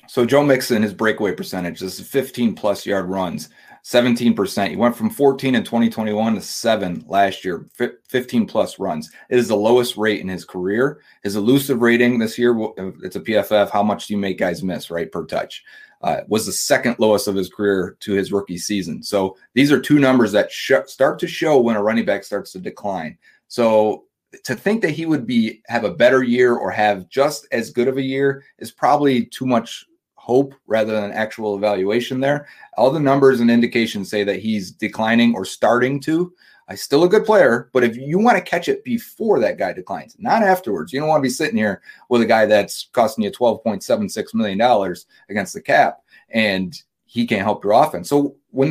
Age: 30-49